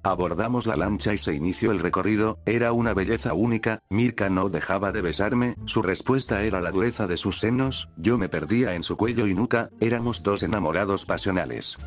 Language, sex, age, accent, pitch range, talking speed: Spanish, male, 60-79, Spanish, 95-115 Hz, 185 wpm